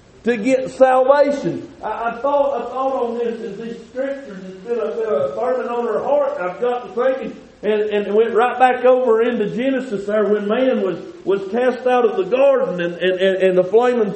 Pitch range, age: 195-255 Hz, 50-69